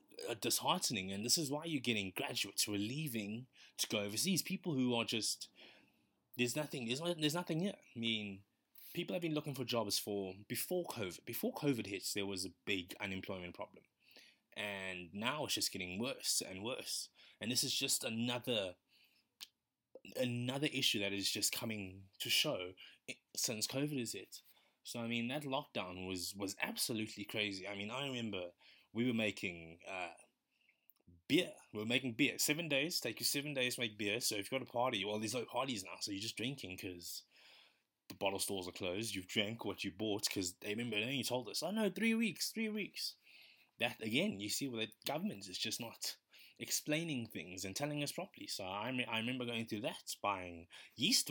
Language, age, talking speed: English, 20-39, 195 wpm